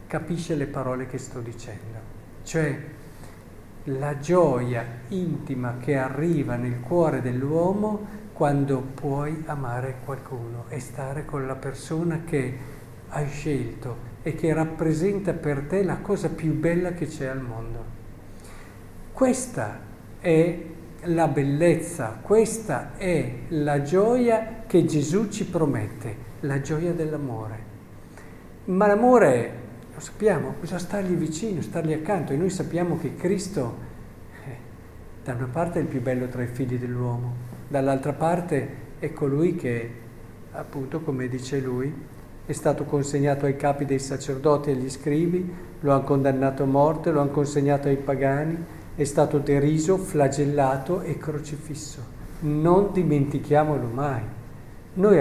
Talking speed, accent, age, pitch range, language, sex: 130 wpm, native, 50-69, 125-165 Hz, Italian, male